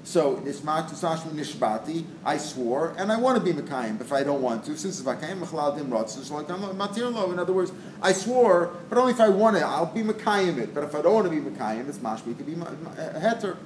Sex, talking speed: male, 205 wpm